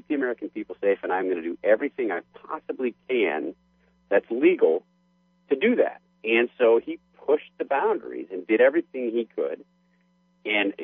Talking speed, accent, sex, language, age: 165 wpm, American, male, English, 50-69